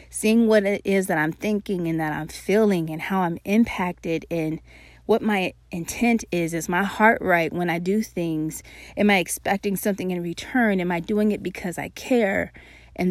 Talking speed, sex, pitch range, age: 190 wpm, female, 170-205 Hz, 30-49